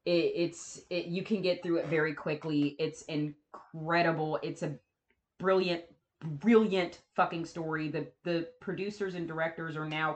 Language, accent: English, American